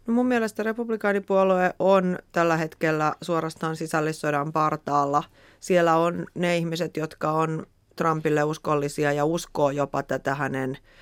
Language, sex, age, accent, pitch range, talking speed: Finnish, female, 30-49, native, 140-160 Hz, 125 wpm